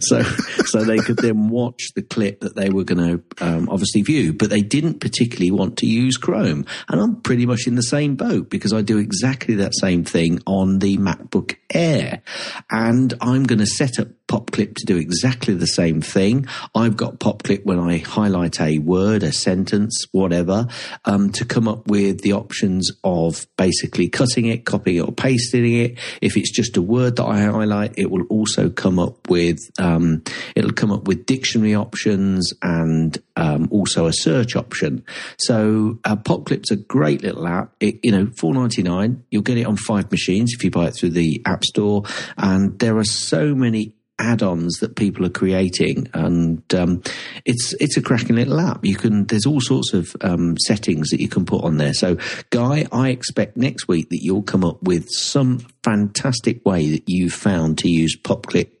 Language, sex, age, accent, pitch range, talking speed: English, male, 50-69, British, 90-120 Hz, 190 wpm